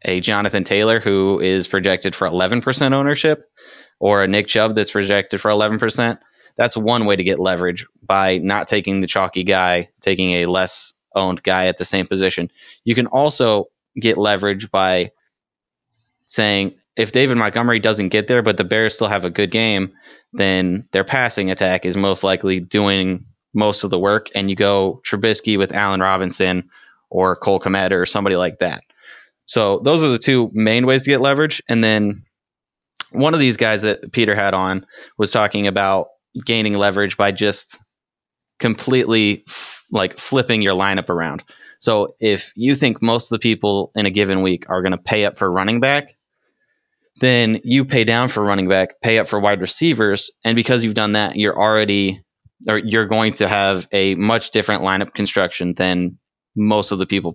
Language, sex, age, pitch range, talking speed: English, male, 20-39, 95-115 Hz, 180 wpm